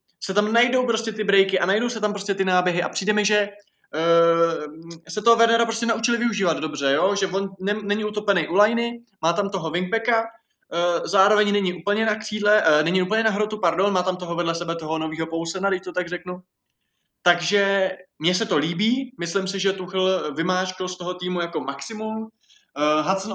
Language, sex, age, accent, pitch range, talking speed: Czech, male, 20-39, native, 160-195 Hz, 200 wpm